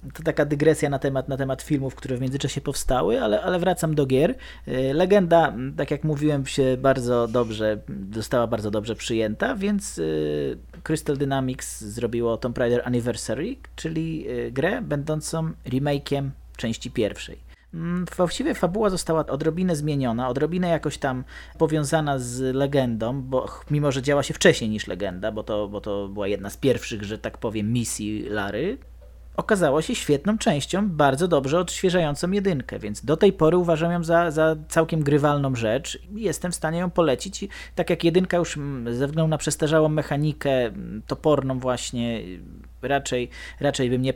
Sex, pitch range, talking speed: male, 110-150 Hz, 155 wpm